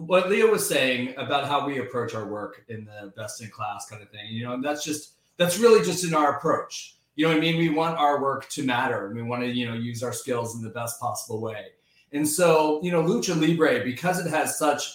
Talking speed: 255 wpm